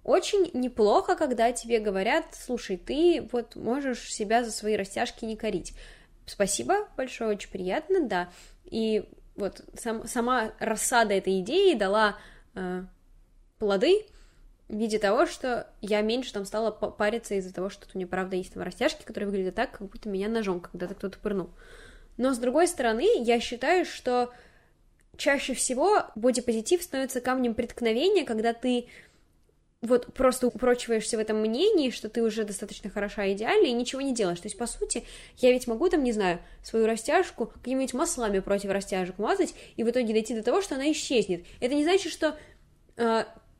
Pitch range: 215-275 Hz